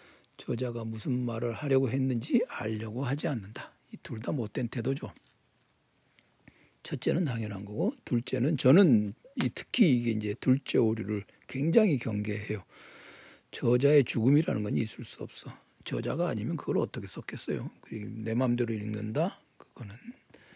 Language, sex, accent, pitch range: Korean, male, native, 115-150 Hz